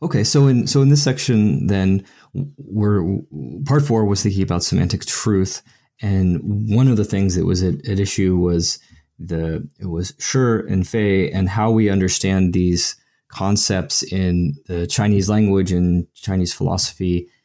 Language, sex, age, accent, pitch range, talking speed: English, male, 20-39, American, 90-120 Hz, 160 wpm